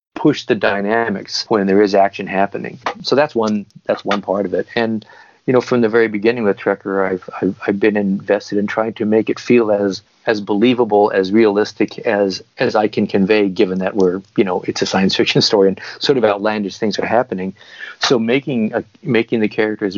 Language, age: English, 40-59